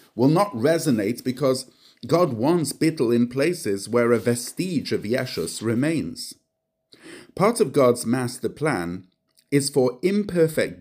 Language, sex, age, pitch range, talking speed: English, male, 50-69, 110-155 Hz, 130 wpm